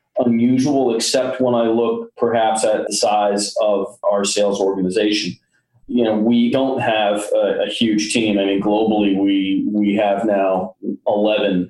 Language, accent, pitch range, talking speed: English, American, 100-120 Hz, 155 wpm